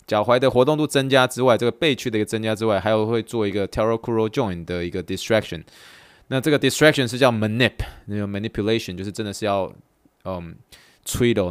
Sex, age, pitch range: male, 20-39, 100-135 Hz